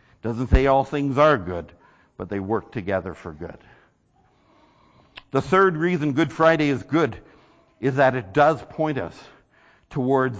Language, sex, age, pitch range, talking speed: English, male, 60-79, 115-160 Hz, 150 wpm